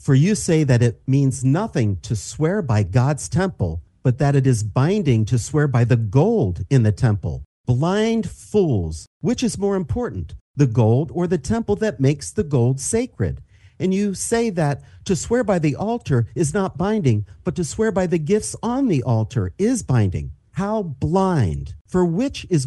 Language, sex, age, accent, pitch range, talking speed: English, male, 50-69, American, 115-180 Hz, 185 wpm